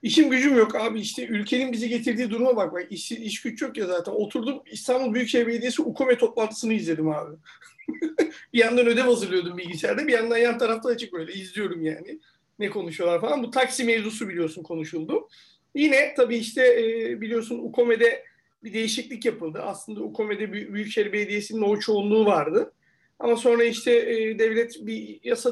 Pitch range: 205-255 Hz